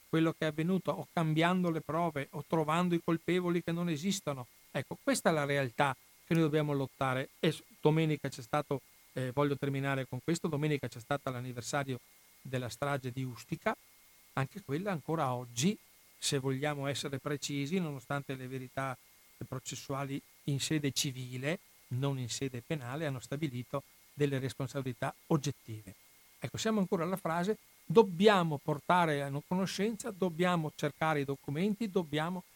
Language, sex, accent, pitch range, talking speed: Italian, male, native, 130-160 Hz, 145 wpm